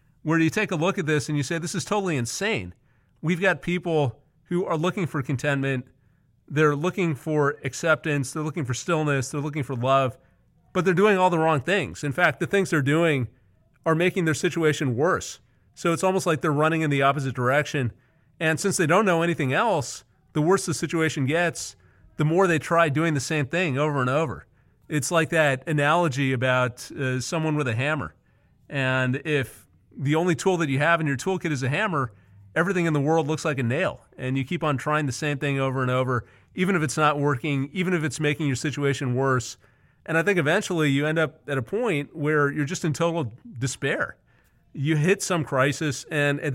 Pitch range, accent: 135-165 Hz, American